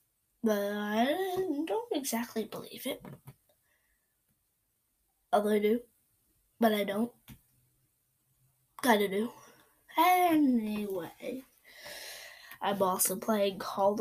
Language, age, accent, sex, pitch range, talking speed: English, 10-29, American, female, 200-255 Hz, 85 wpm